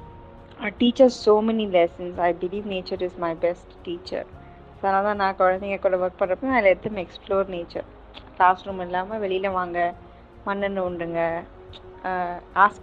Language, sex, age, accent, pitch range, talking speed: Tamil, female, 20-39, native, 175-200 Hz, 135 wpm